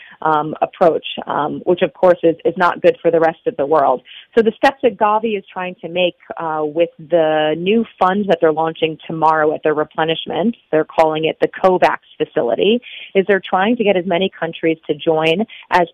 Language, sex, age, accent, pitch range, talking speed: English, female, 30-49, American, 160-205 Hz, 205 wpm